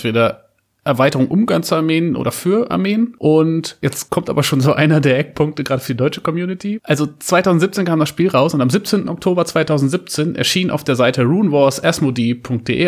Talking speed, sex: 175 wpm, male